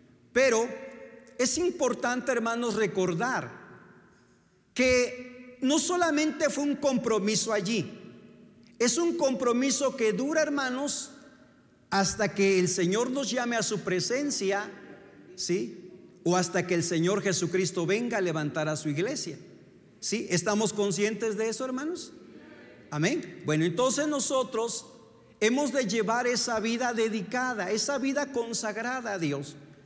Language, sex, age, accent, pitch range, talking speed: Spanish, male, 50-69, Mexican, 205-255 Hz, 125 wpm